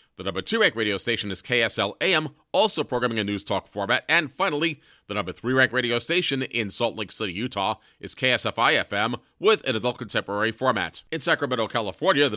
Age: 40-59